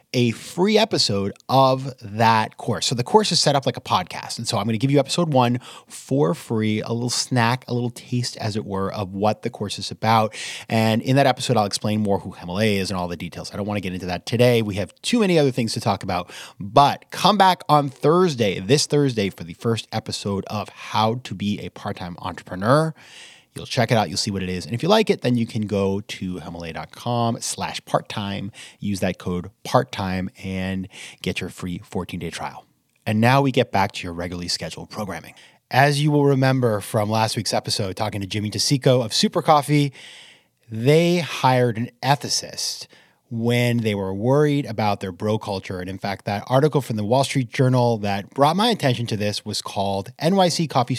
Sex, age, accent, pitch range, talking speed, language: male, 30-49, American, 100-140 Hz, 210 wpm, English